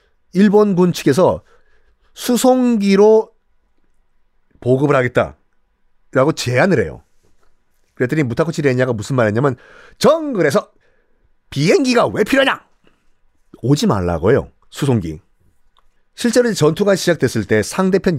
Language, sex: Korean, male